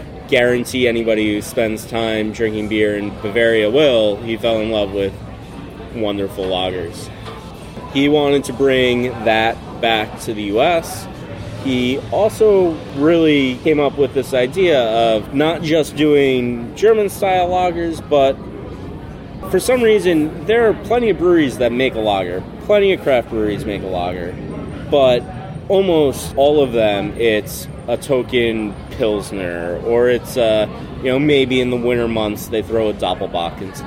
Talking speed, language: 150 wpm, English